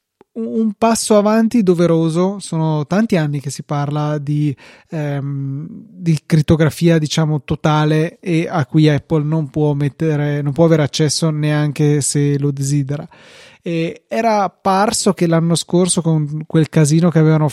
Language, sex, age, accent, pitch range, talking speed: Italian, male, 20-39, native, 145-165 Hz, 145 wpm